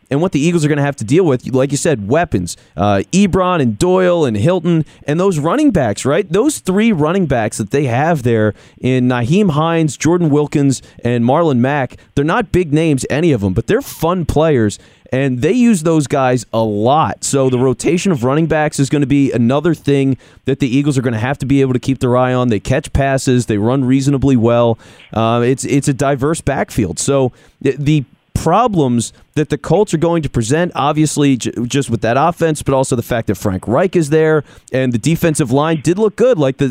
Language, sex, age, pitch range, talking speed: English, male, 30-49, 125-165 Hz, 220 wpm